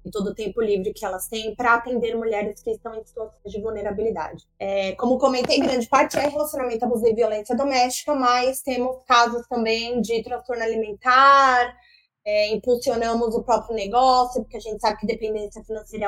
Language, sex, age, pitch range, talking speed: Portuguese, female, 20-39, 210-245 Hz, 170 wpm